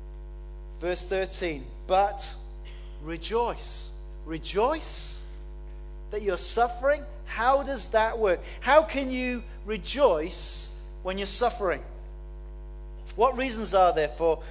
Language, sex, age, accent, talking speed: English, male, 40-59, British, 100 wpm